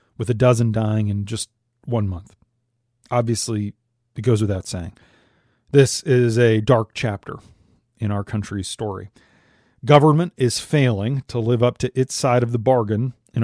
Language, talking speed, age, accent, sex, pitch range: English, 155 wpm, 40-59, American, male, 115-140 Hz